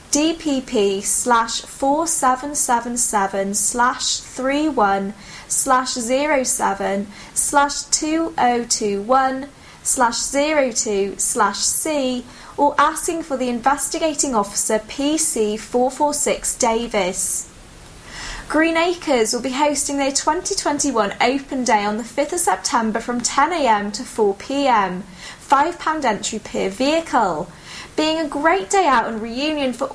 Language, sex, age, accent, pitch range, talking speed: English, female, 10-29, British, 225-295 Hz, 130 wpm